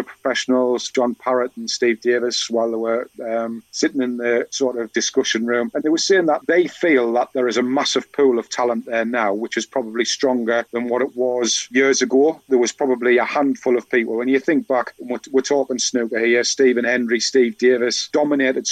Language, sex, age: English, male, 40-59